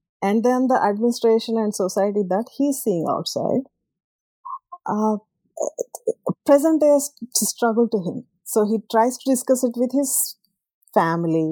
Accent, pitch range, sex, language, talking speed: Indian, 180-240 Hz, female, English, 125 wpm